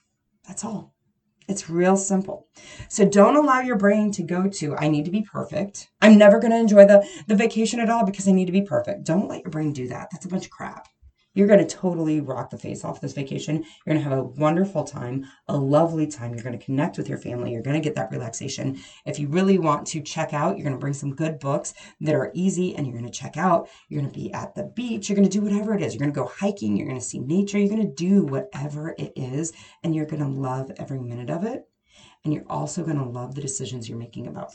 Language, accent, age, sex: English, American, 30-49, female